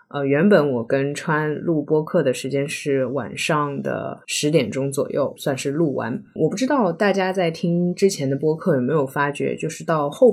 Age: 20-39